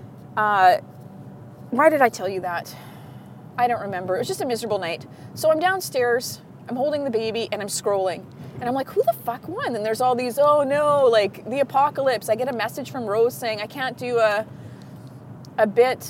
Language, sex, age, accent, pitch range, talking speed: English, female, 30-49, American, 230-345 Hz, 205 wpm